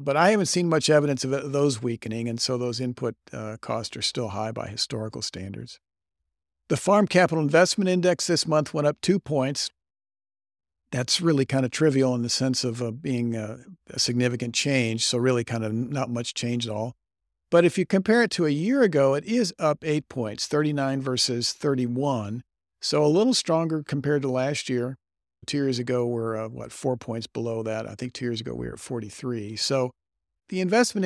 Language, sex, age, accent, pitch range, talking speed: English, male, 50-69, American, 115-150 Hz, 200 wpm